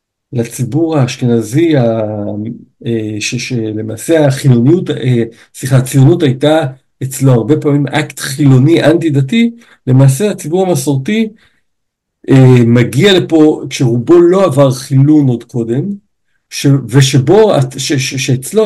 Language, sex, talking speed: Hebrew, male, 95 wpm